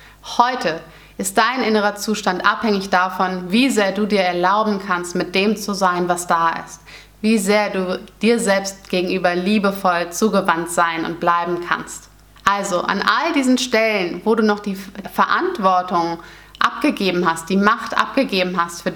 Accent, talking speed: German, 155 wpm